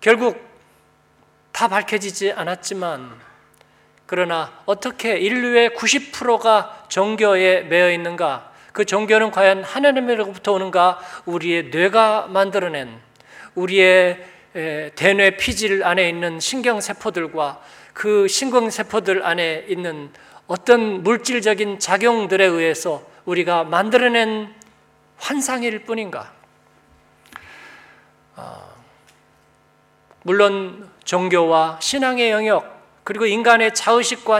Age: 40-59